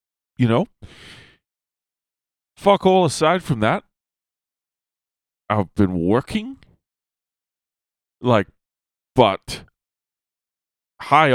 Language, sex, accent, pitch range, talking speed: English, male, American, 100-140 Hz, 70 wpm